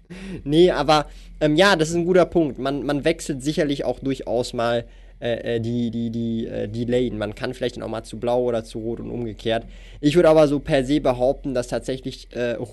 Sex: male